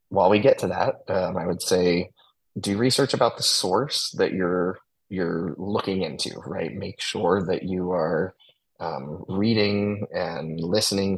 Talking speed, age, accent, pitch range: 155 wpm, 20-39, American, 90-105 Hz